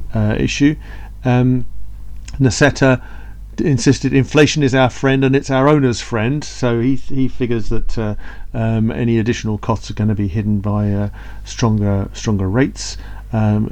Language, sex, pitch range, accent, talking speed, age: English, male, 105-125 Hz, British, 160 wpm, 40-59